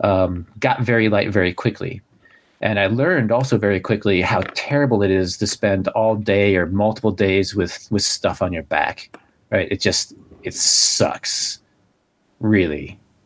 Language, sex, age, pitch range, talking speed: English, male, 40-59, 95-110 Hz, 160 wpm